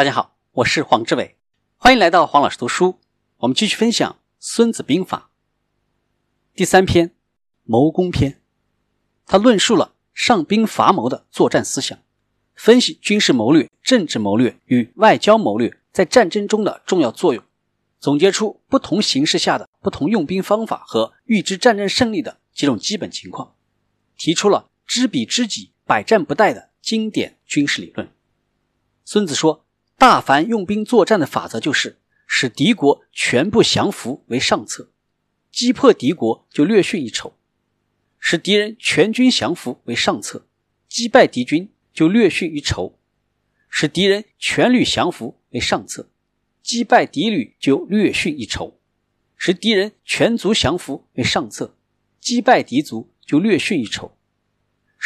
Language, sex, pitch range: Chinese, male, 155-240 Hz